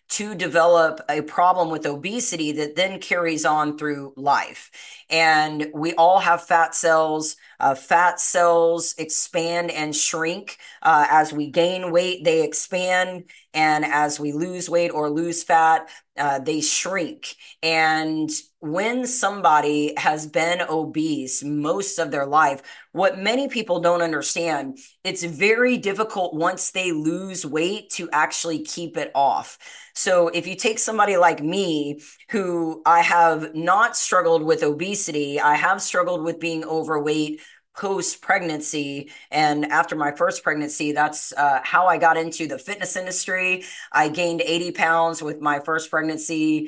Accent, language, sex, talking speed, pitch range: American, English, female, 145 wpm, 150-175 Hz